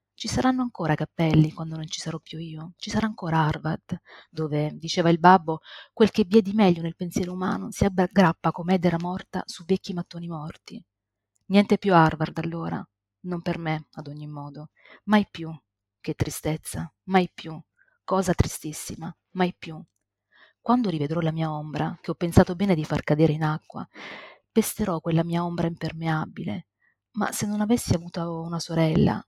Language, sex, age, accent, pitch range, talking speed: Italian, female, 30-49, native, 160-185 Hz, 170 wpm